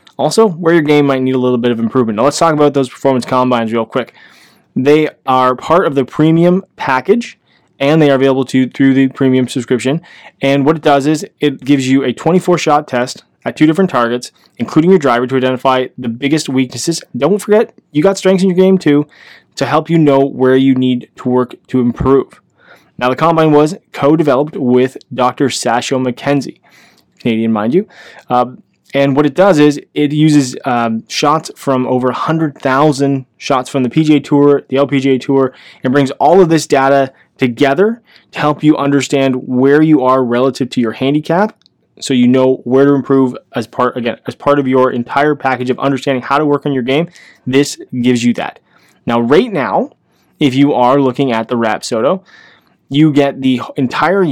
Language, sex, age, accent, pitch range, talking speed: English, male, 20-39, American, 130-150 Hz, 190 wpm